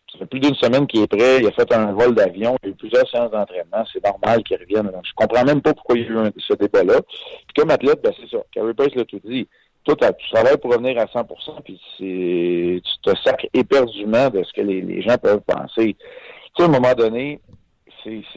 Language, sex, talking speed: French, male, 250 wpm